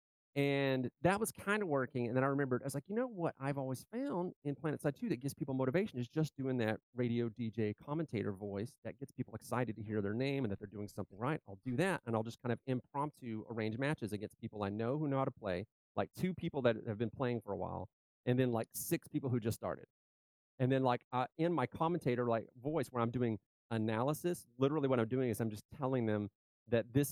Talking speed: 245 wpm